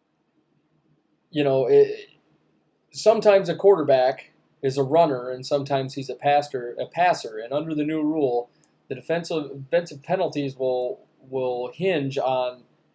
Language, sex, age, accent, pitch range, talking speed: English, male, 20-39, American, 125-150 Hz, 135 wpm